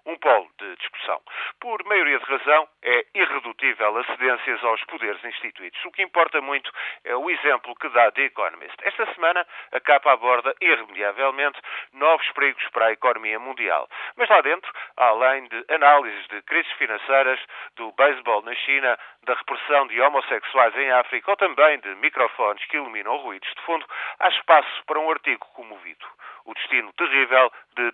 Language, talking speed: Portuguese, 160 wpm